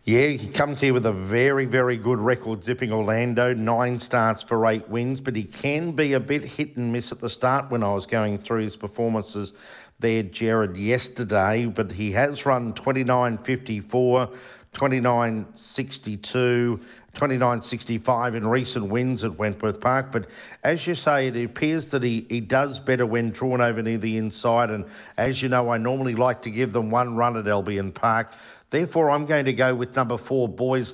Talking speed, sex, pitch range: 180 wpm, male, 110-130 Hz